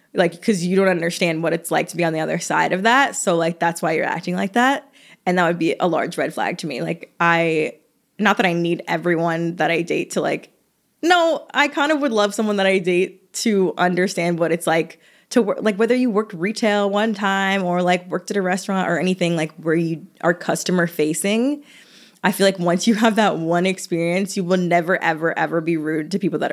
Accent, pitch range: American, 170-225 Hz